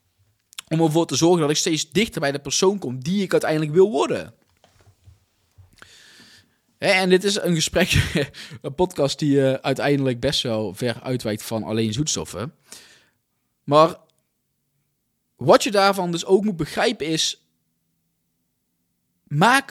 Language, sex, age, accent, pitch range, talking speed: Dutch, male, 20-39, Dutch, 130-200 Hz, 130 wpm